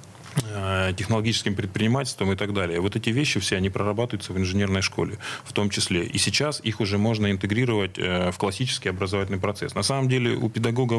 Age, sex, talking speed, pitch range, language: 20-39, male, 175 wpm, 95-115 Hz, Russian